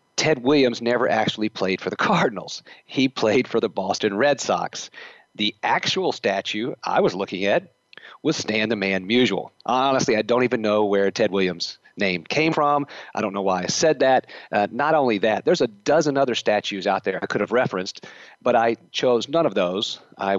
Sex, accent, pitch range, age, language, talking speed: male, American, 95-130 Hz, 40-59, English, 195 wpm